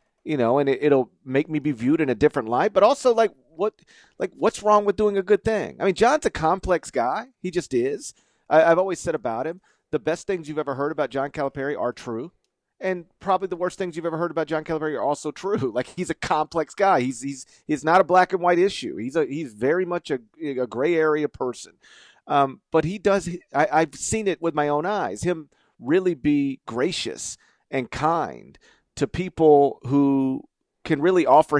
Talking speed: 215 wpm